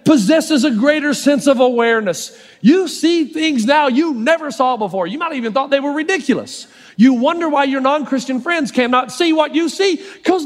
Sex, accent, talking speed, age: male, American, 190 wpm, 40-59